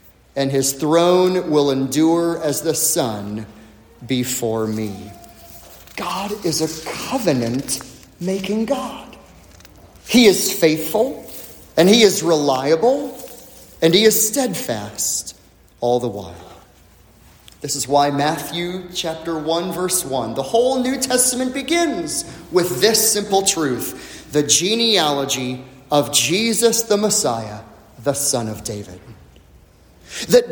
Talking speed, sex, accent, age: 110 wpm, male, American, 30-49